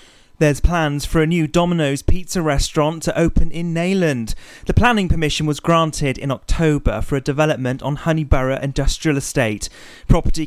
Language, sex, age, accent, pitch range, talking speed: English, male, 30-49, British, 125-165 Hz, 155 wpm